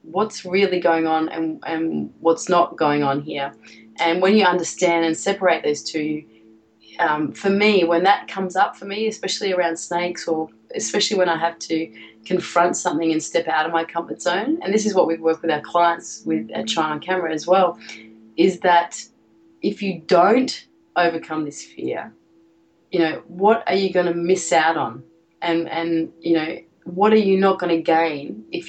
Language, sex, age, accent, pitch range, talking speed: English, female, 30-49, Australian, 150-180 Hz, 190 wpm